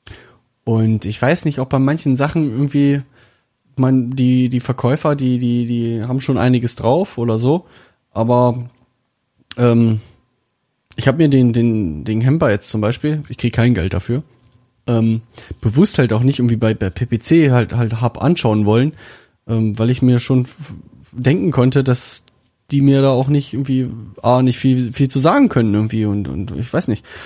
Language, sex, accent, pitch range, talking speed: German, male, German, 115-135 Hz, 180 wpm